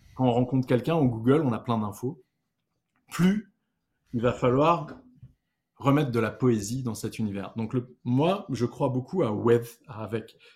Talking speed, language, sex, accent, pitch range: 175 wpm, French, male, French, 115-150 Hz